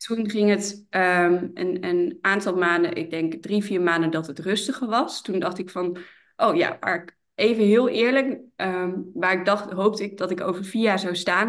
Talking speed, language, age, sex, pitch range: 210 wpm, Dutch, 20-39, female, 175-205 Hz